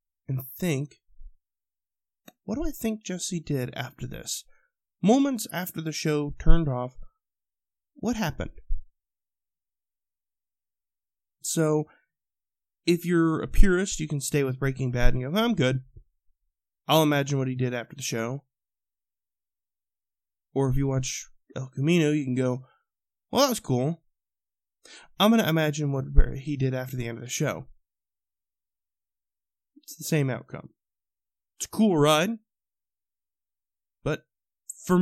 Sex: male